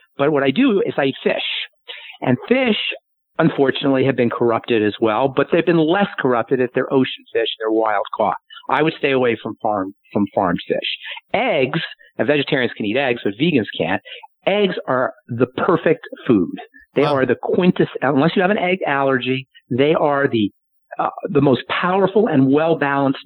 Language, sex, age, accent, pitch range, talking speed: English, male, 50-69, American, 130-155 Hz, 180 wpm